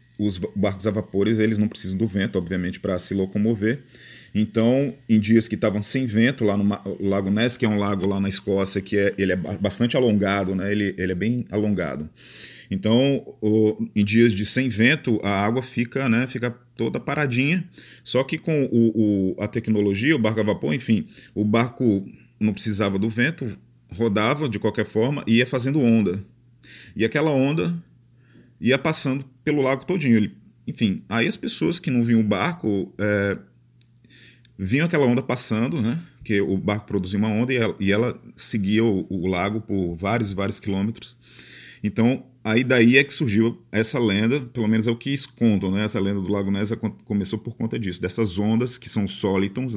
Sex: male